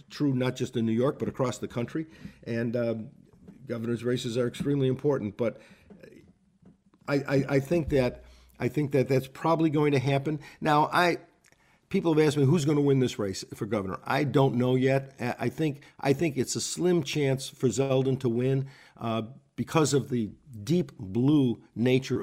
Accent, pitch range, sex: American, 120-145 Hz, male